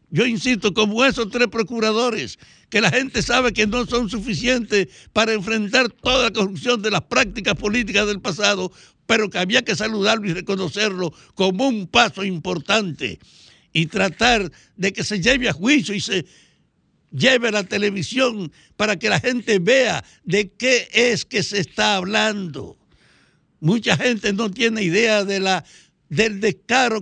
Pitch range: 195-235 Hz